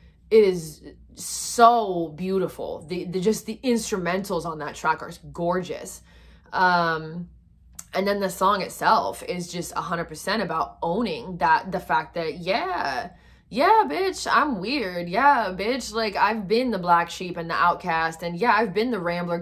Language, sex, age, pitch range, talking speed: English, female, 20-39, 180-235 Hz, 160 wpm